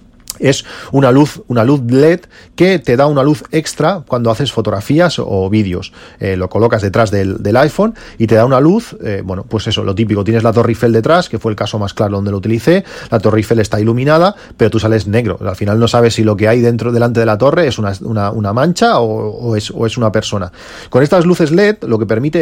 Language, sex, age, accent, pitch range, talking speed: Spanish, male, 40-59, Spanish, 105-125 Hz, 240 wpm